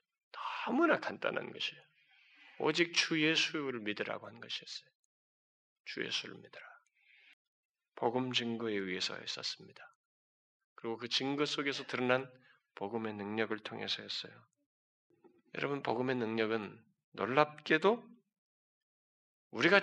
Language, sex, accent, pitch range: Korean, male, native, 115-195 Hz